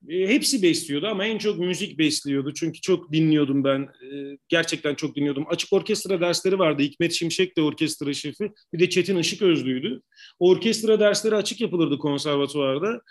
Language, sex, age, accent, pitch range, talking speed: Turkish, male, 40-59, native, 160-195 Hz, 150 wpm